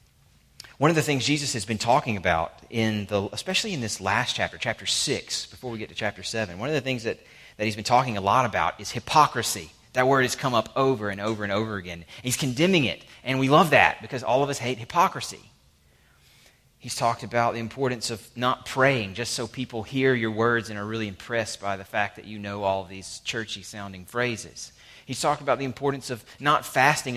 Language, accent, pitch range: English, American, 110-130 Hz